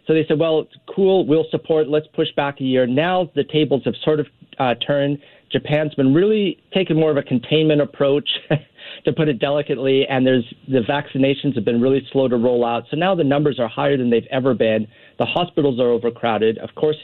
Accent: American